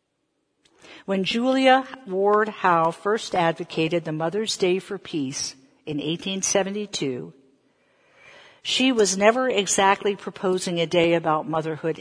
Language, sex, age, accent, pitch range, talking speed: English, female, 60-79, American, 165-215 Hz, 110 wpm